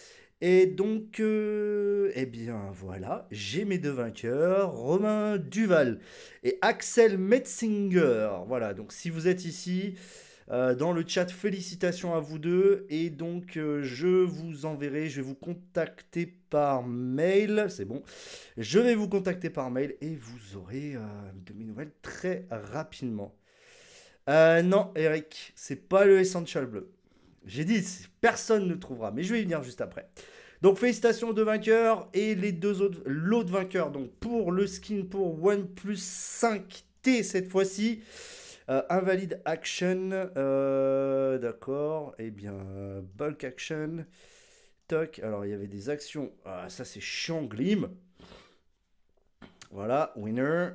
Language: French